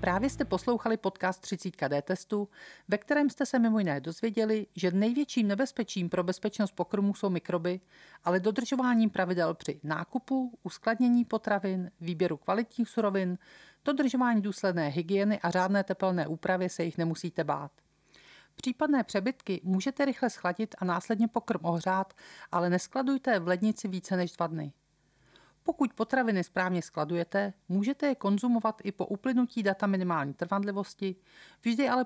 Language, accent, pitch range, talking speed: Czech, native, 180-225 Hz, 140 wpm